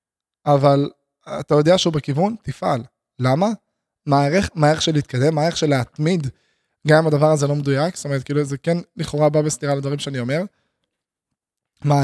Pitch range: 145-175 Hz